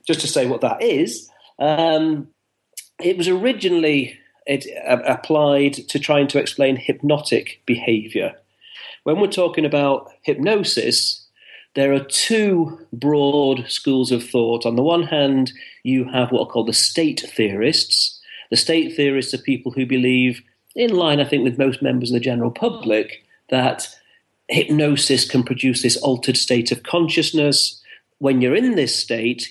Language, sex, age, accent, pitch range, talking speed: English, male, 40-59, British, 120-150 Hz, 150 wpm